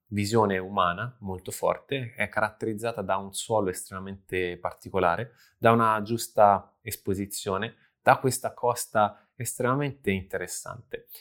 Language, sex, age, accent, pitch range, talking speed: Italian, male, 20-39, native, 100-125 Hz, 105 wpm